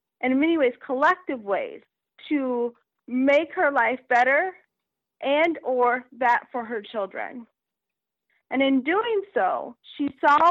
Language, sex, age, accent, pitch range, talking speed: English, female, 30-49, American, 235-300 Hz, 130 wpm